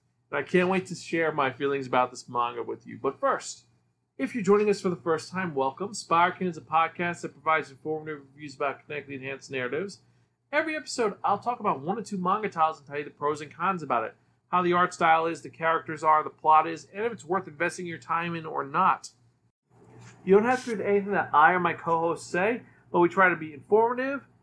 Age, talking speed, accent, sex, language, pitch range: 40-59, 230 wpm, American, male, English, 145-195 Hz